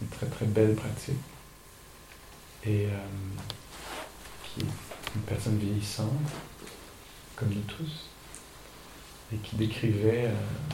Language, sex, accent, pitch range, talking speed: English, male, French, 110-130 Hz, 105 wpm